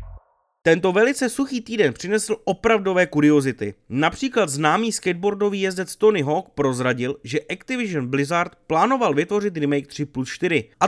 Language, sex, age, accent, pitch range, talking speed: Czech, male, 30-49, native, 140-220 Hz, 130 wpm